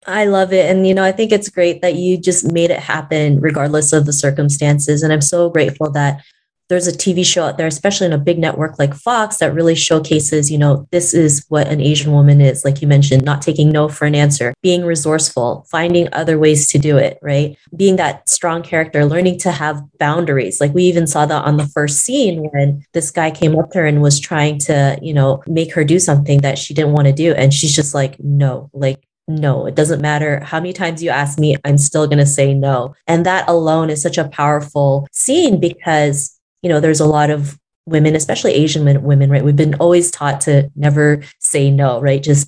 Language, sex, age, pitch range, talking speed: English, female, 20-39, 145-165 Hz, 225 wpm